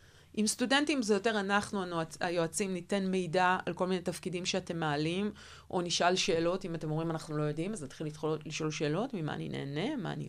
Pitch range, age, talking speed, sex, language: 160-205 Hz, 30-49, 185 wpm, female, Hebrew